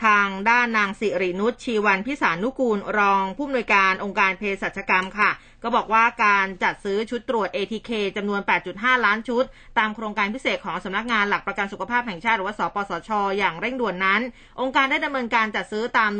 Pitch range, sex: 200-255 Hz, female